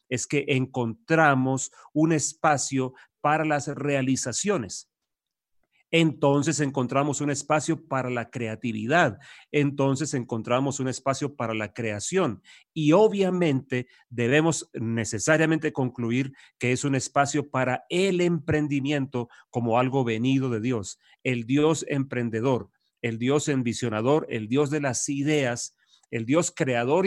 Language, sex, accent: English, male, Mexican